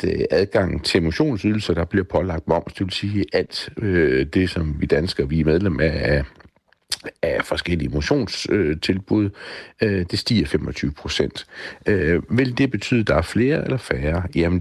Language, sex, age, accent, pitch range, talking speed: Danish, male, 60-79, native, 75-105 Hz, 165 wpm